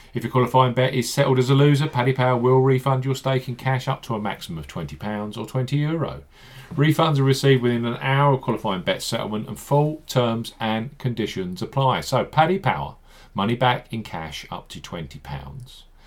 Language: English